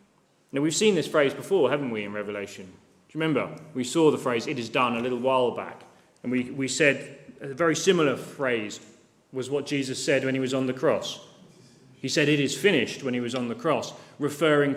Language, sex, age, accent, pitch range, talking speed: English, male, 30-49, British, 125-150 Hz, 220 wpm